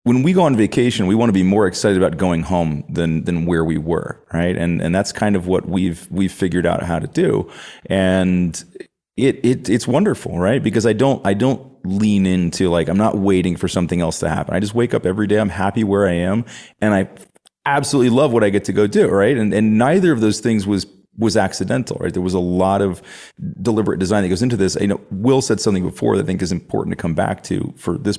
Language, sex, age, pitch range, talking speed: English, male, 30-49, 90-115 Hz, 245 wpm